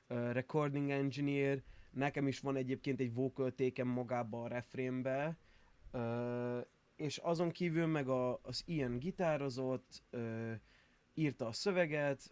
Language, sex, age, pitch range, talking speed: Hungarian, male, 20-39, 120-150 Hz, 100 wpm